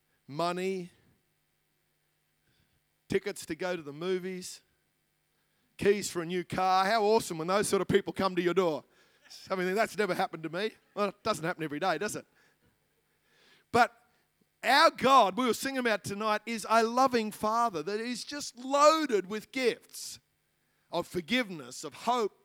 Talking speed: 160 wpm